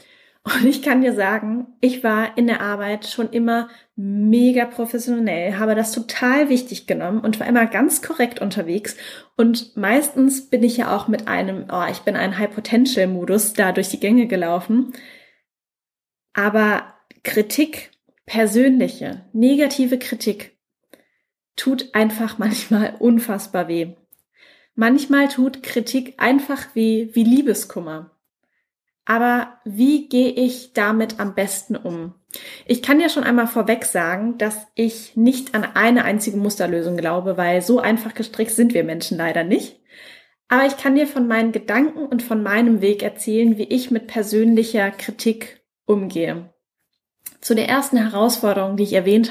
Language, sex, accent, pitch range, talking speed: German, female, German, 210-250 Hz, 145 wpm